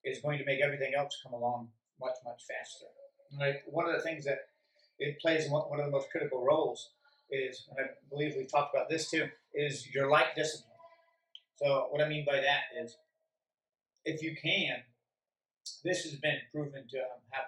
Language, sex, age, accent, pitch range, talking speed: English, male, 40-59, American, 130-155 Hz, 185 wpm